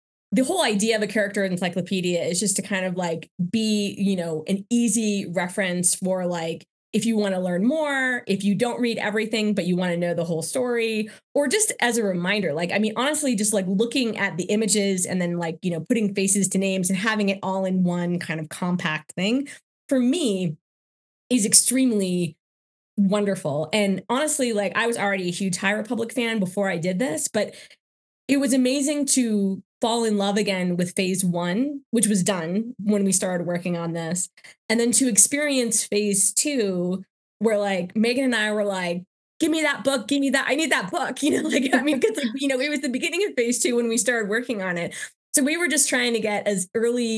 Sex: female